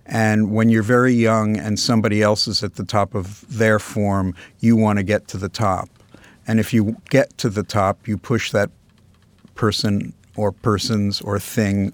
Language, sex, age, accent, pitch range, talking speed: English, male, 50-69, American, 100-115 Hz, 185 wpm